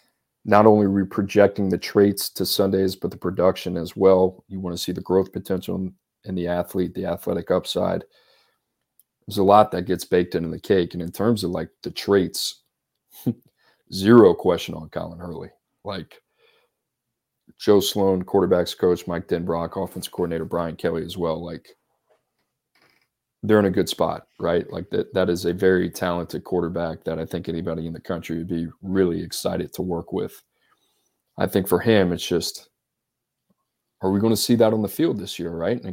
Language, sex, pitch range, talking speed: English, male, 90-105 Hz, 180 wpm